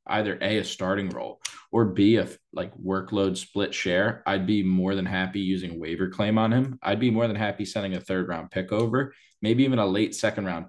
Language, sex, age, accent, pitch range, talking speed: English, male, 20-39, American, 95-110 Hz, 210 wpm